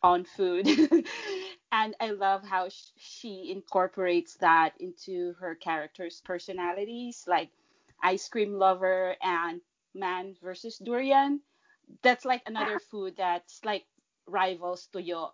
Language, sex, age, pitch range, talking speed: English, female, 30-49, 185-245 Hz, 115 wpm